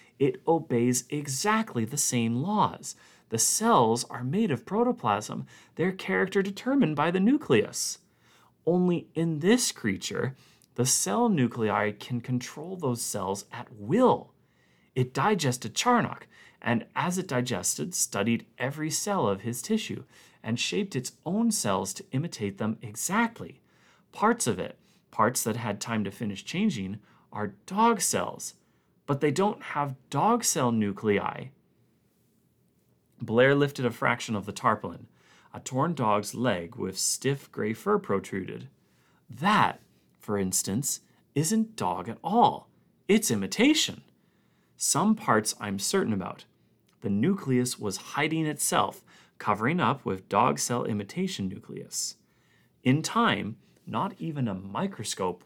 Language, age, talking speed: English, 30-49, 130 wpm